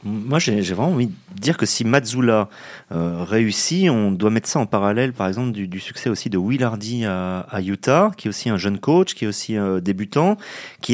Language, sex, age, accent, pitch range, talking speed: French, male, 30-49, French, 105-140 Hz, 225 wpm